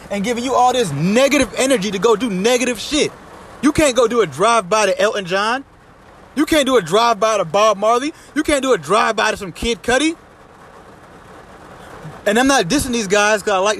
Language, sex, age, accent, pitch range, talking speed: English, male, 20-39, American, 195-245 Hz, 205 wpm